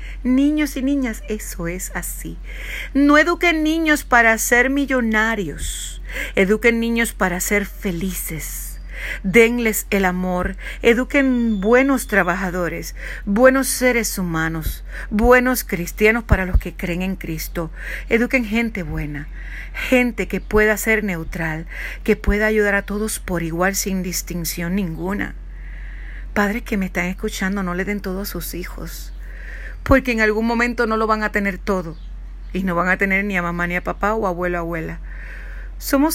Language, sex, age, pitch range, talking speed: Spanish, female, 50-69, 185-245 Hz, 150 wpm